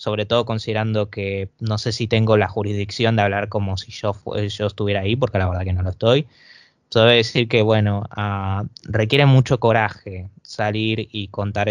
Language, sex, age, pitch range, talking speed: Spanish, male, 20-39, 105-115 Hz, 190 wpm